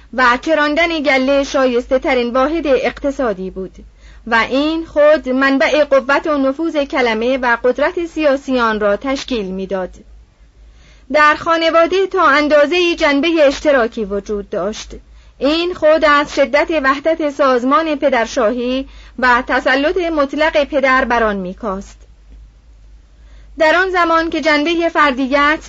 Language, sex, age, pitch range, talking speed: Persian, female, 30-49, 240-305 Hz, 115 wpm